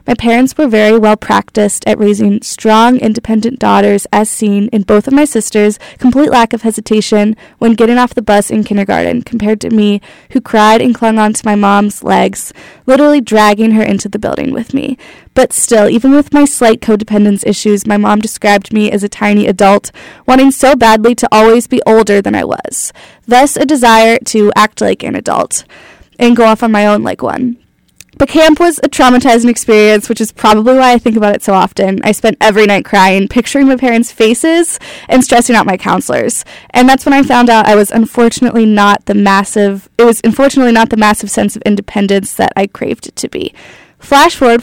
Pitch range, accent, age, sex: 210-255 Hz, American, 10-29, female